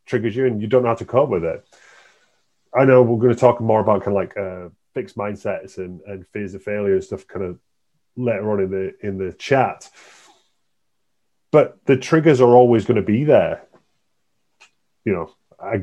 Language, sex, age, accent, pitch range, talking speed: English, male, 30-49, British, 100-125 Hz, 200 wpm